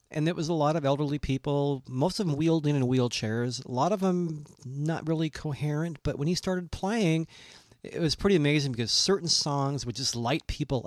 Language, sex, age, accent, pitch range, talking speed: English, male, 40-59, American, 115-150 Hz, 210 wpm